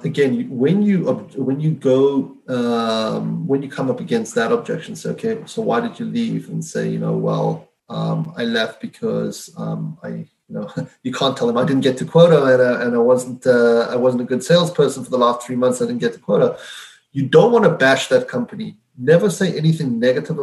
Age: 30-49